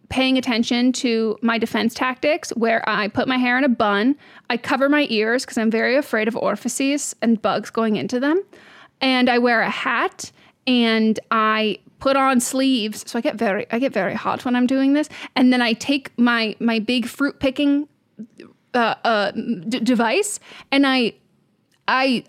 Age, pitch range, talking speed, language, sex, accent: 20-39, 230-270 Hz, 180 wpm, English, female, American